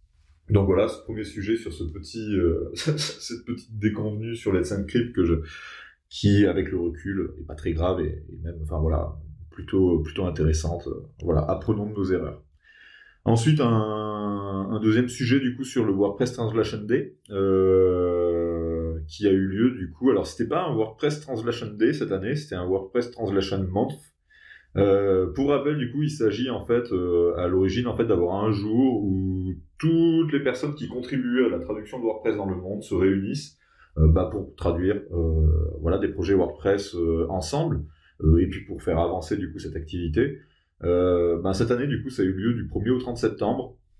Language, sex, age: French, male, 20-39